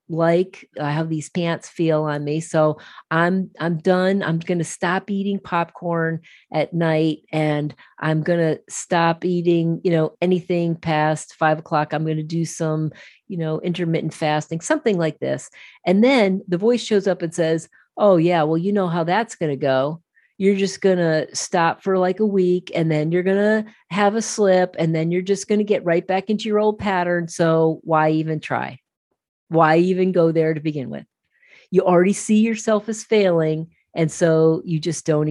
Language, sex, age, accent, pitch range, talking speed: English, female, 40-59, American, 155-185 Hz, 180 wpm